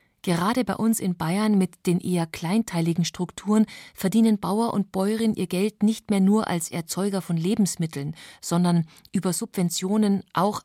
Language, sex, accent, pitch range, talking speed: German, female, German, 175-225 Hz, 150 wpm